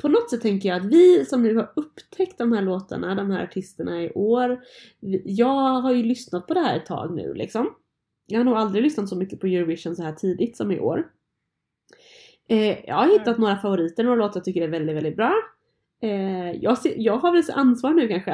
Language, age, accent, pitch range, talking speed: Swedish, 20-39, native, 180-235 Hz, 210 wpm